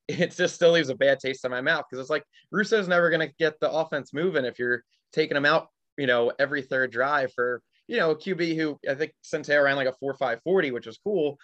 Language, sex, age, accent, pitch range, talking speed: English, male, 20-39, American, 120-150 Hz, 245 wpm